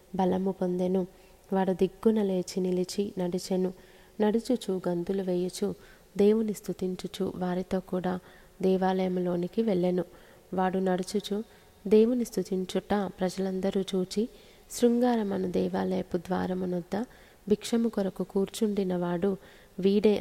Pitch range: 185-205 Hz